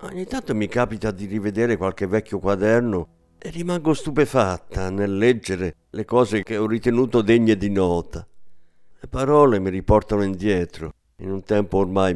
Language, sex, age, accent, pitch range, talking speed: Italian, male, 50-69, native, 90-130 Hz, 155 wpm